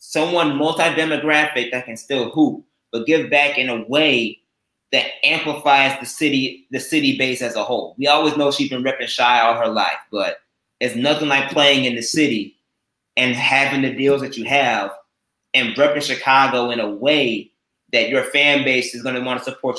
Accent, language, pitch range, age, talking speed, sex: American, English, 125-150 Hz, 20-39, 190 wpm, male